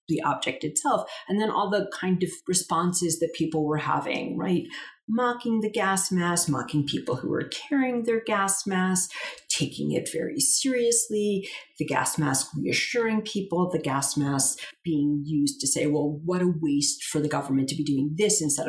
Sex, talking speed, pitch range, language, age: female, 175 wpm, 150-195 Hz, English, 40-59